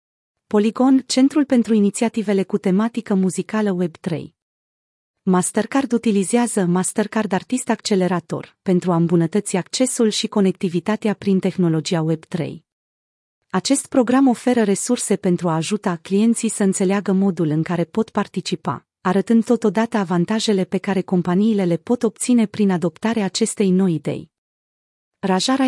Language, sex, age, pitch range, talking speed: Romanian, female, 30-49, 180-220 Hz, 120 wpm